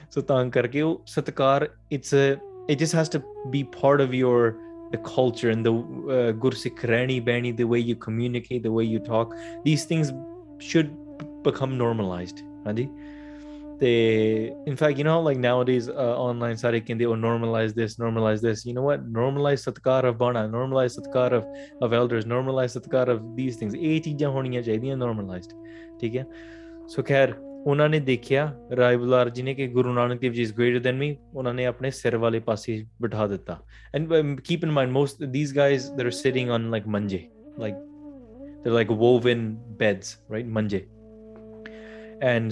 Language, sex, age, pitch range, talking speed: English, male, 20-39, 115-140 Hz, 130 wpm